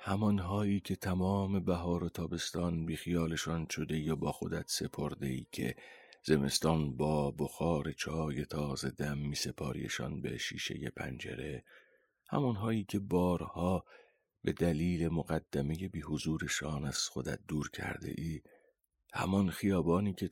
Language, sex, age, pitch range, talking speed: Persian, male, 40-59, 75-95 Hz, 125 wpm